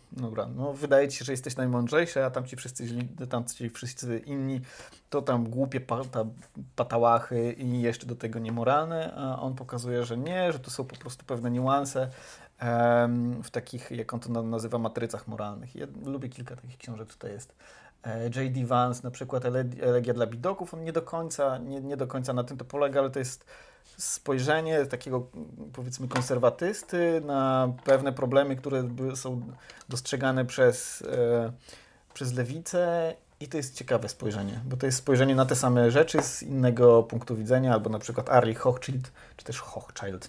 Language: Polish